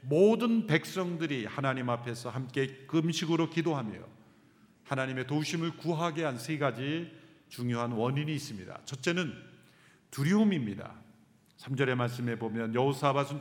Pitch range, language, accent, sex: 125-190 Hz, Korean, native, male